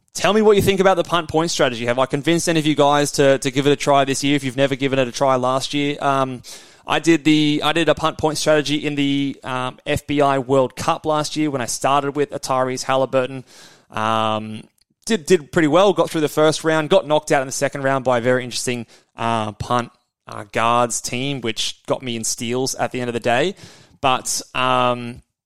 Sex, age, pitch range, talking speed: male, 20-39, 125-150 Hz, 230 wpm